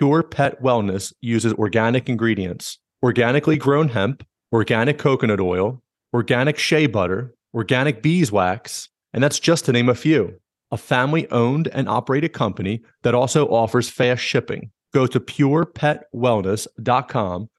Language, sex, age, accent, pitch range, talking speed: English, male, 30-49, American, 115-145 Hz, 125 wpm